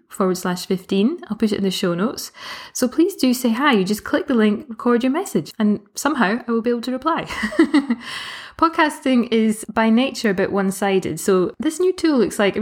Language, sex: English, female